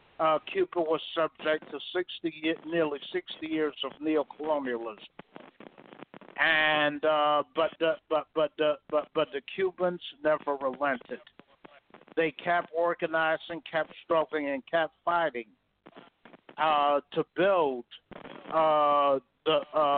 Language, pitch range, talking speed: English, 145-165 Hz, 115 wpm